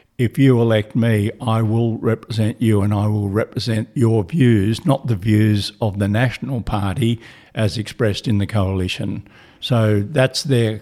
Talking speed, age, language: 160 wpm, 60-79, English